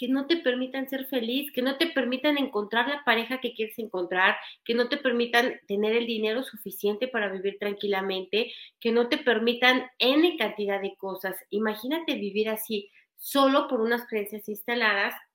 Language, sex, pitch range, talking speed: Spanish, female, 205-265 Hz, 170 wpm